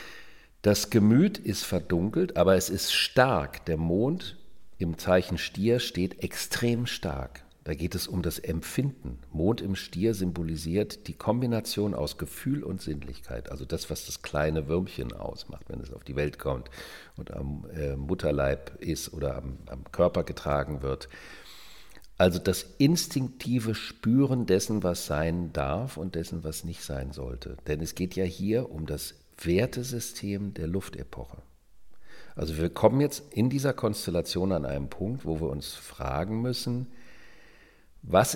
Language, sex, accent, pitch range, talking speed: German, male, German, 75-110 Hz, 150 wpm